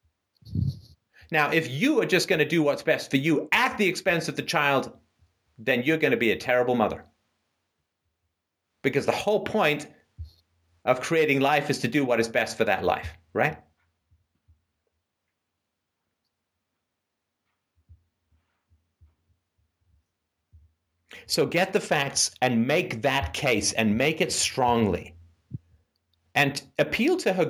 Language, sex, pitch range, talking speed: English, male, 90-150 Hz, 130 wpm